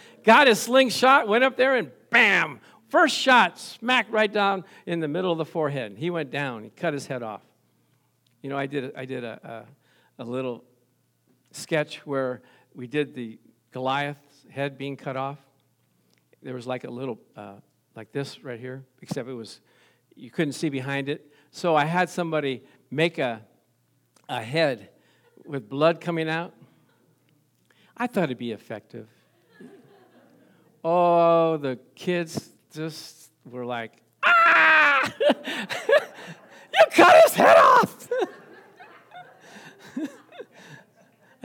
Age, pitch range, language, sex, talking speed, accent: 50-69, 135-205 Hz, English, male, 140 wpm, American